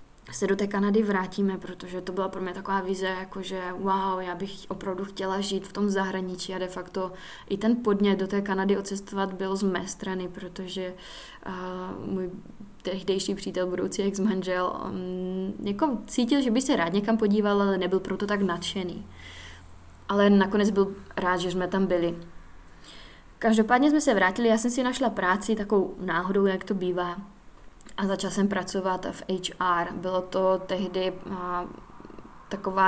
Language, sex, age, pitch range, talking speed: Czech, female, 20-39, 185-200 Hz, 160 wpm